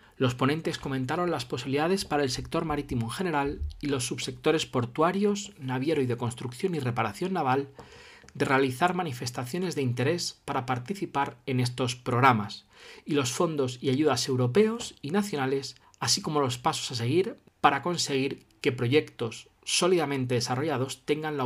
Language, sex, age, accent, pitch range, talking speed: Spanish, male, 40-59, Spanish, 125-155 Hz, 150 wpm